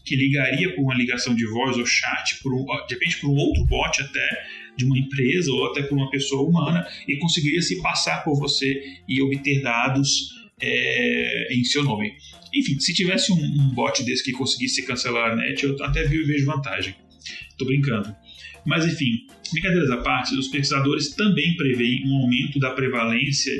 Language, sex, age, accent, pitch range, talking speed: Portuguese, male, 30-49, Brazilian, 120-145 Hz, 185 wpm